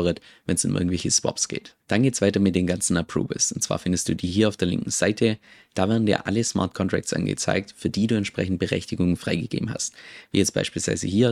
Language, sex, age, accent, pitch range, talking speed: German, male, 20-39, German, 90-105 Hz, 225 wpm